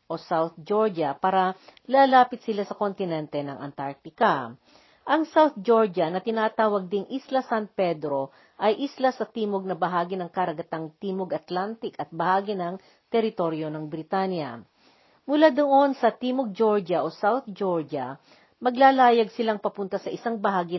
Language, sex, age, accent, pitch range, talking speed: Filipino, female, 40-59, native, 165-225 Hz, 140 wpm